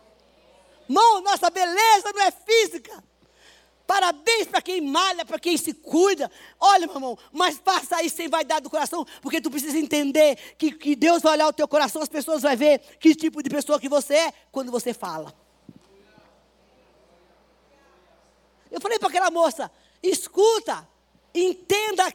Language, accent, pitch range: Portuguese, Brazilian, 275-380 Hz